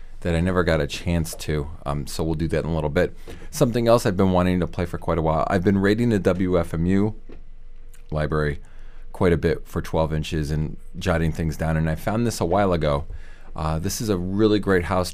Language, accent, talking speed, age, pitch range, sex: English, American, 225 wpm, 30-49, 80-95 Hz, male